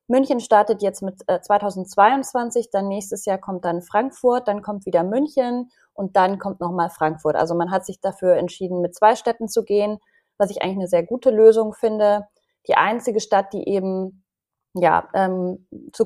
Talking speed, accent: 175 wpm, German